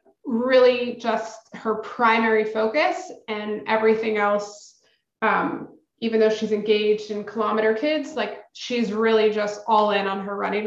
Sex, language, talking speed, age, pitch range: female, English, 140 wpm, 20-39, 205-230 Hz